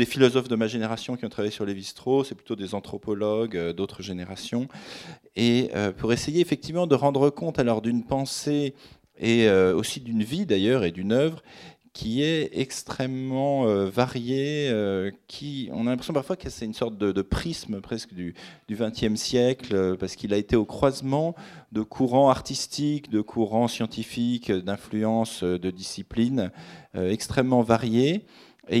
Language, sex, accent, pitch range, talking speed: French, male, French, 100-130 Hz, 150 wpm